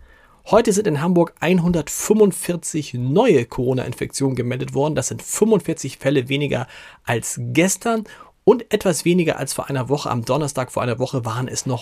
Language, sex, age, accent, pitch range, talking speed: German, male, 40-59, German, 125-165 Hz, 155 wpm